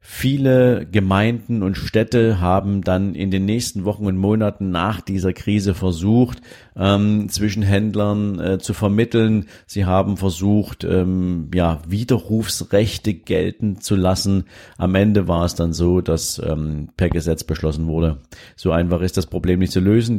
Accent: German